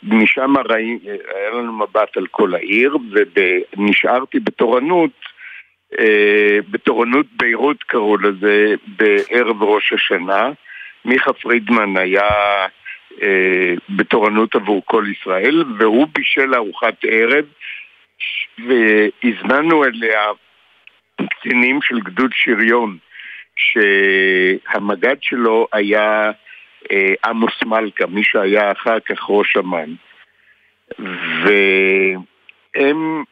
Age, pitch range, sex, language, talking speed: 60-79, 105-145 Hz, male, Hebrew, 85 wpm